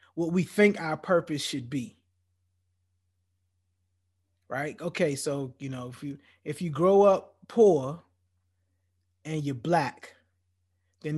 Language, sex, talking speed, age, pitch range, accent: English, male, 125 wpm, 20-39, 120-195 Hz, American